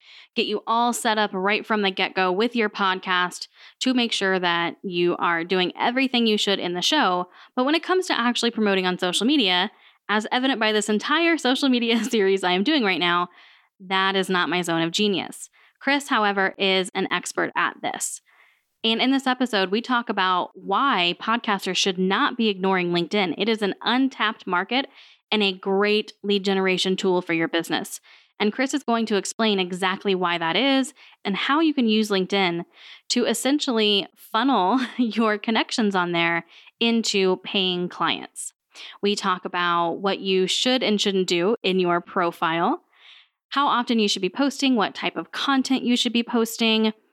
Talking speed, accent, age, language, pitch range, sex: 180 wpm, American, 10-29, English, 185-240 Hz, female